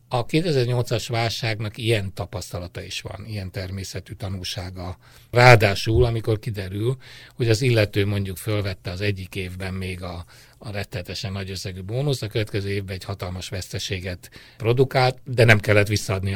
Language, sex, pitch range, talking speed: Hungarian, male, 100-120 Hz, 145 wpm